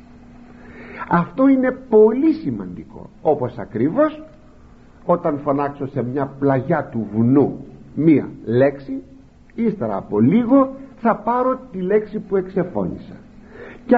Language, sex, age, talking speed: Greek, male, 60-79, 105 wpm